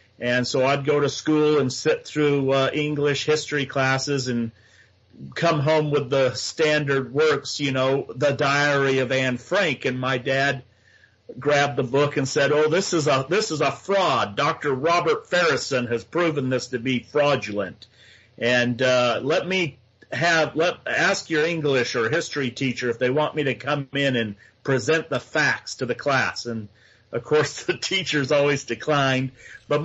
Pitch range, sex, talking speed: 125-150 Hz, male, 175 wpm